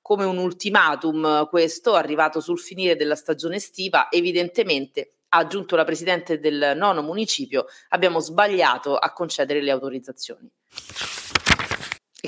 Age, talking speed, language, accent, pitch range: 30-49, 120 wpm, Italian, native, 155-200 Hz